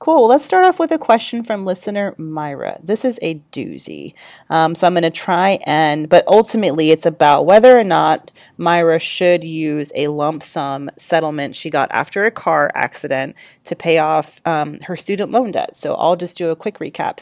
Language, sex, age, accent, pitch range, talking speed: English, female, 30-49, American, 155-195 Hz, 195 wpm